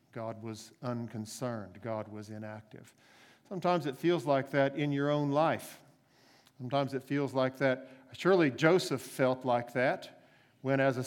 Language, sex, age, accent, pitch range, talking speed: English, male, 50-69, American, 130-145 Hz, 150 wpm